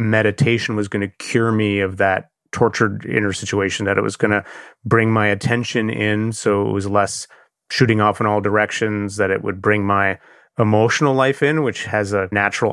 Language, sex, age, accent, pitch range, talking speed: English, male, 30-49, American, 105-125 Hz, 195 wpm